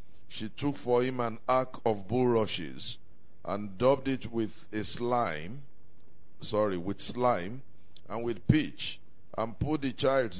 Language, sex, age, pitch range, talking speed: English, male, 50-69, 105-135 Hz, 140 wpm